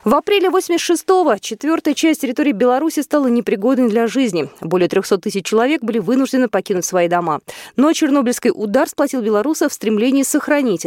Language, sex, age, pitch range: Russian, female, 20-39, 190-290 Hz